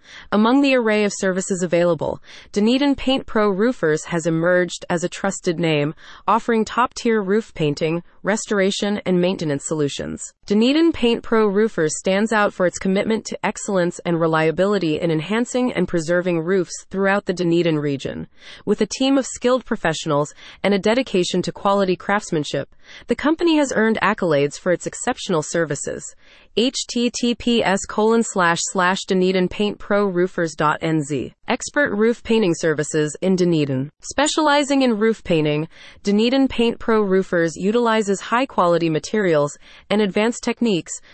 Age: 30-49